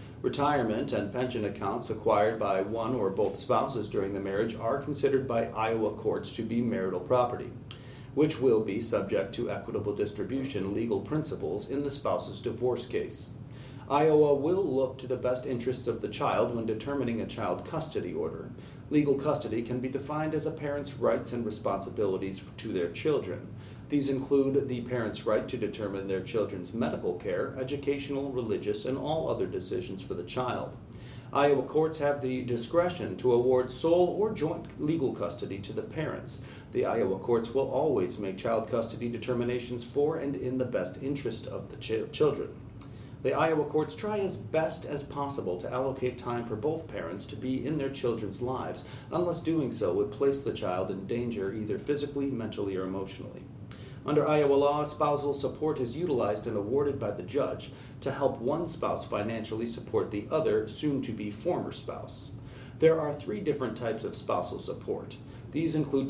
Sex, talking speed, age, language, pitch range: male, 170 wpm, 40-59, English, 115-145 Hz